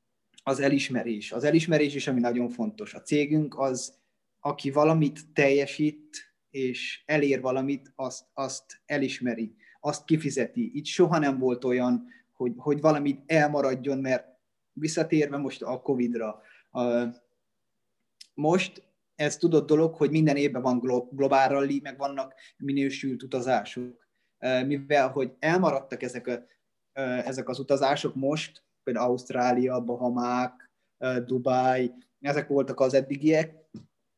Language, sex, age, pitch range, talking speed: Hungarian, male, 20-39, 130-150 Hz, 120 wpm